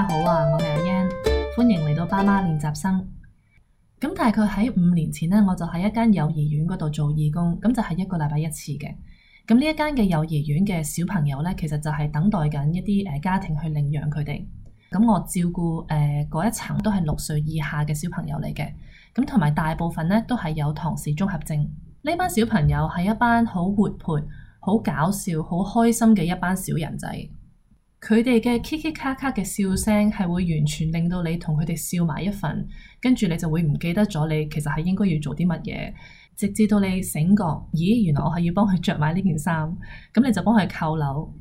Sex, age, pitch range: female, 20-39, 155-205 Hz